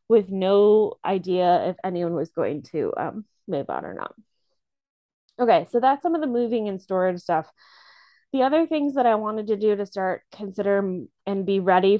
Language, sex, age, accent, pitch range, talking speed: English, female, 20-39, American, 185-220 Hz, 185 wpm